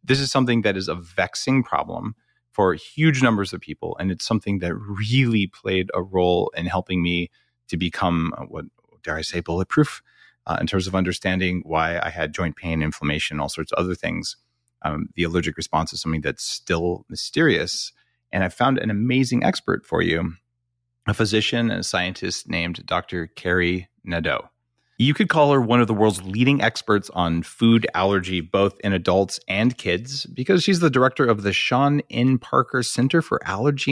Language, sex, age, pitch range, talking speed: English, male, 30-49, 90-120 Hz, 180 wpm